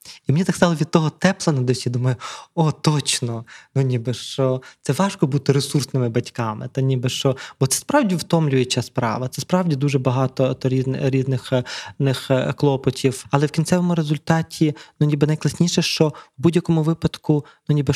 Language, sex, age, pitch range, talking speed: Ukrainian, male, 20-39, 130-150 Hz, 155 wpm